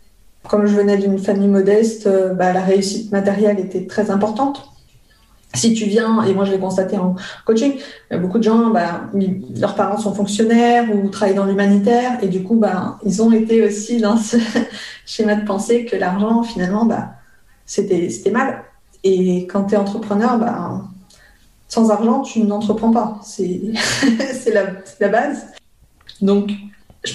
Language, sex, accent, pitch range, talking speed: French, female, French, 195-225 Hz, 165 wpm